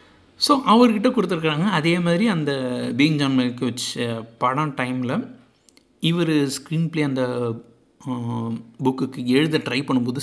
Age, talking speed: 60-79, 110 wpm